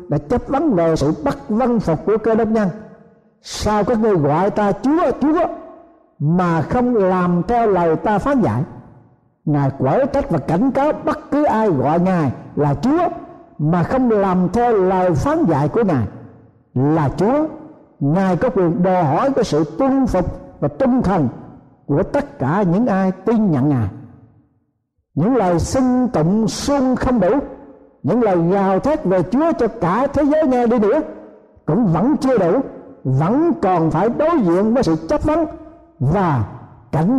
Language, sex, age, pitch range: Thai, male, 60-79, 155-250 Hz